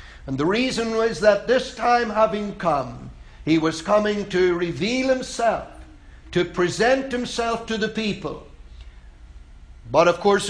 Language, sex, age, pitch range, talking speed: English, male, 60-79, 165-220 Hz, 135 wpm